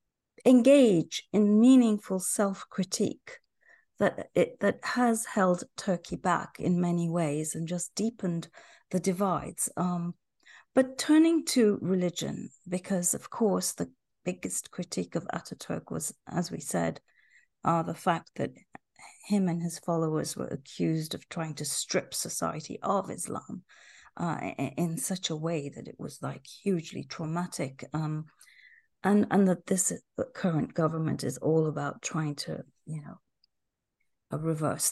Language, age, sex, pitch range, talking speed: English, 40-59, female, 165-210 Hz, 140 wpm